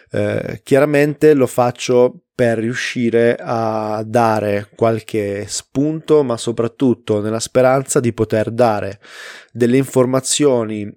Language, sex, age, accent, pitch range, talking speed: Italian, male, 20-39, native, 110-130 Hz, 105 wpm